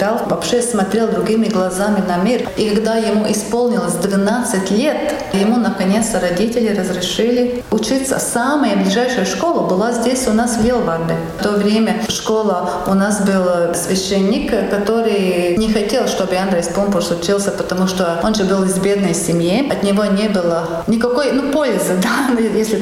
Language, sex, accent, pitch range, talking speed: Russian, female, native, 190-225 Hz, 155 wpm